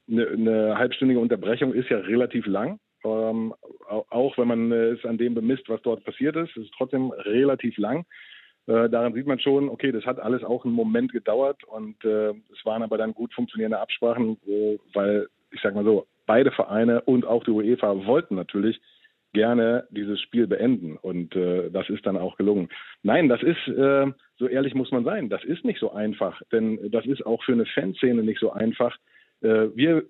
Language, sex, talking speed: German, male, 190 wpm